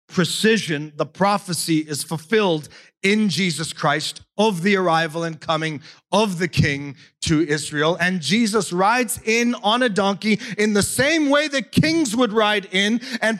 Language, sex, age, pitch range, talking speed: English, male, 40-59, 150-210 Hz, 155 wpm